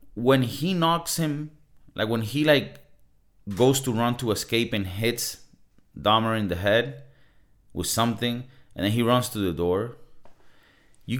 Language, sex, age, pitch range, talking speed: English, male, 30-49, 95-130 Hz, 155 wpm